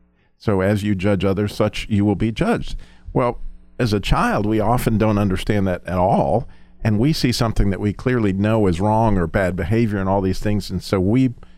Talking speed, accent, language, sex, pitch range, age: 210 wpm, American, English, male, 90-110 Hz, 50-69